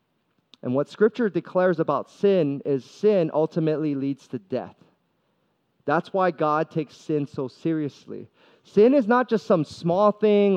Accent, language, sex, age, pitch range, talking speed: American, English, male, 30-49, 155-205 Hz, 150 wpm